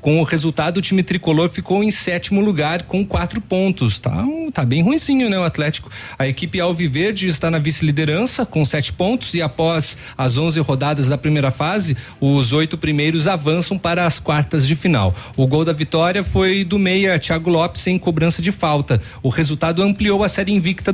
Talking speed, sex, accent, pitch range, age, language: 190 wpm, male, Brazilian, 150-190 Hz, 40-59, Portuguese